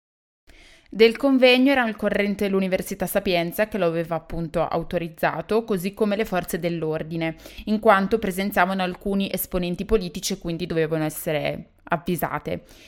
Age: 20-39